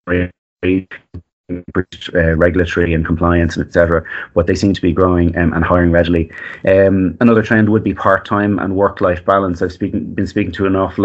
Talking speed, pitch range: 180 wpm, 85-100 Hz